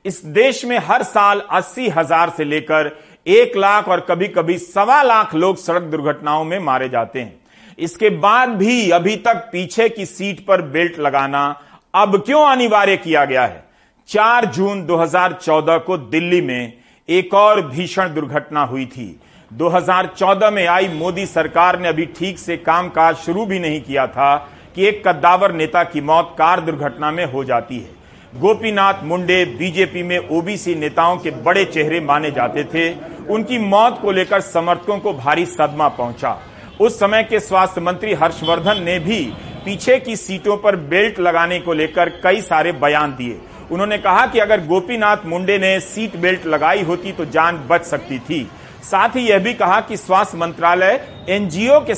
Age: 40-59